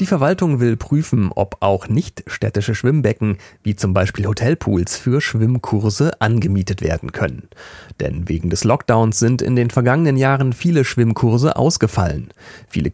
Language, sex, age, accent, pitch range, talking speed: German, male, 40-59, German, 100-125 Hz, 140 wpm